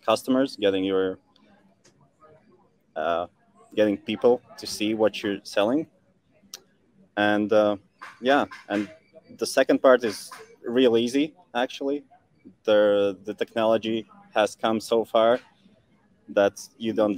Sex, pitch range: male, 100-130 Hz